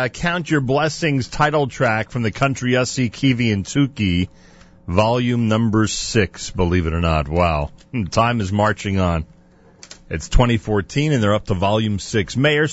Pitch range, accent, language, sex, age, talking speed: 90-125 Hz, American, English, male, 40-59, 160 wpm